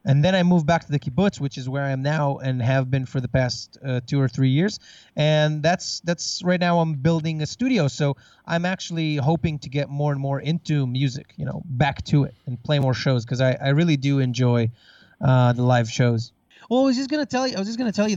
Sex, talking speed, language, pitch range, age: male, 255 wpm, English, 130-165 Hz, 30-49